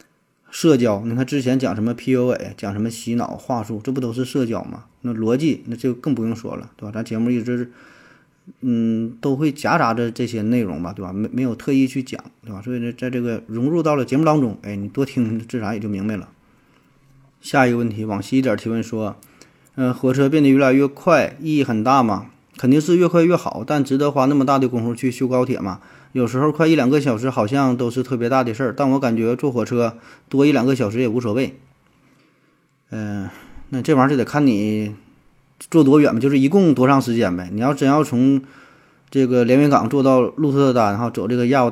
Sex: male